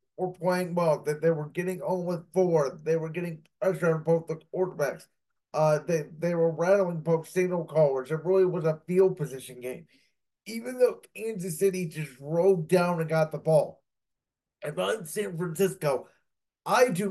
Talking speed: 180 wpm